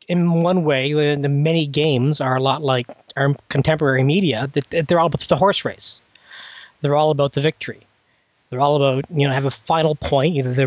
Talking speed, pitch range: 195 wpm, 135-165 Hz